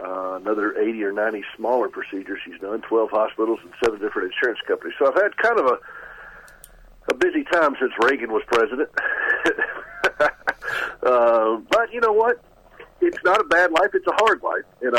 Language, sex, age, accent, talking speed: English, male, 50-69, American, 175 wpm